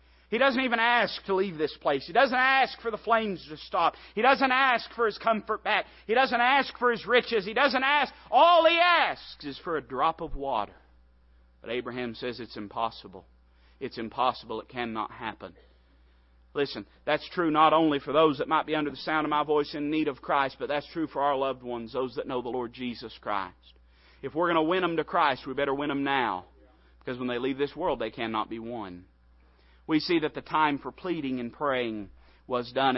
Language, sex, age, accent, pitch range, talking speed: English, male, 40-59, American, 110-175 Hz, 215 wpm